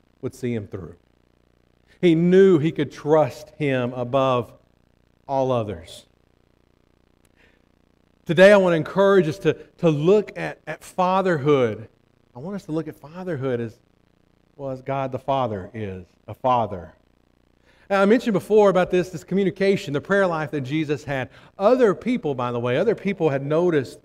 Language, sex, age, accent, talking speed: English, male, 50-69, American, 160 wpm